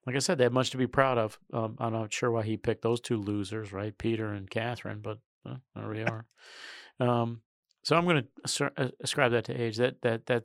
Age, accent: 40-59, American